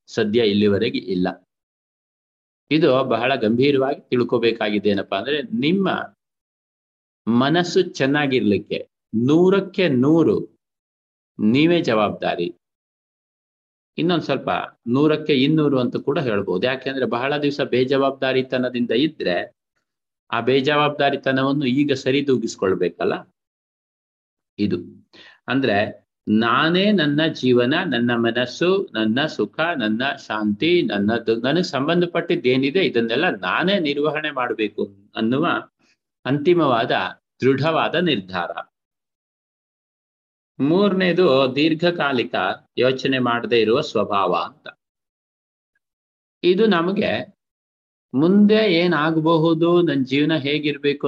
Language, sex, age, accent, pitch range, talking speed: Kannada, male, 50-69, native, 115-160 Hz, 85 wpm